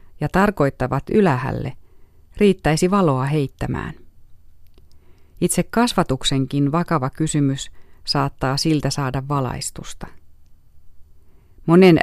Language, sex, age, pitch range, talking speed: Finnish, female, 30-49, 125-165 Hz, 75 wpm